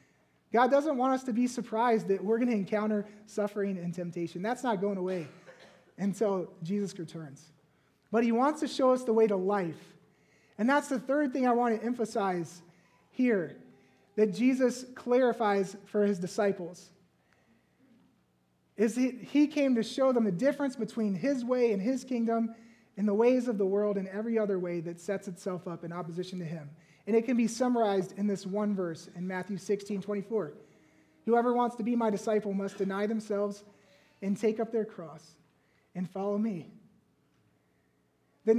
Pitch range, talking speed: 185-235 Hz, 175 wpm